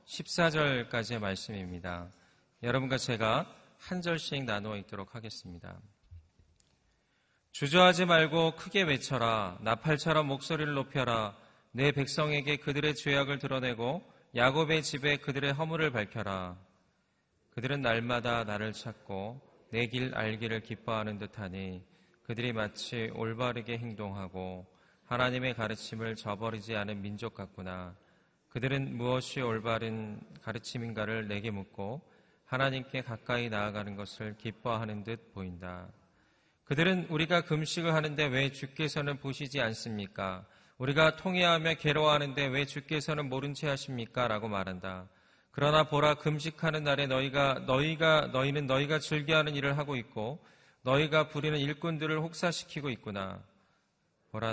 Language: Korean